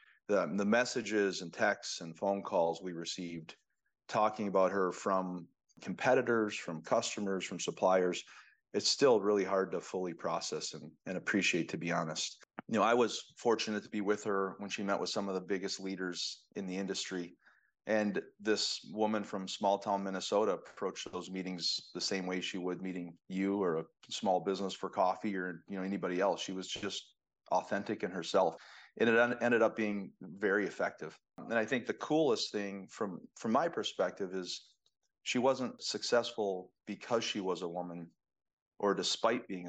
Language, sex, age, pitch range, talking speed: English, male, 30-49, 90-105 Hz, 175 wpm